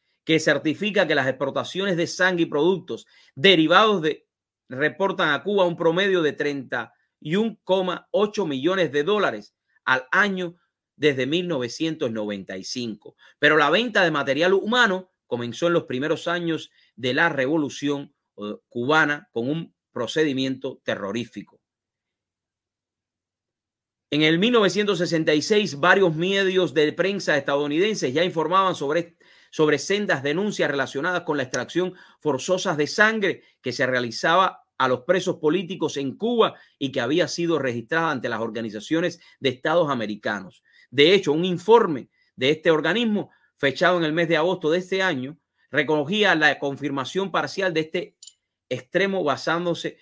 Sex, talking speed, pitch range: male, 130 wpm, 130-180 Hz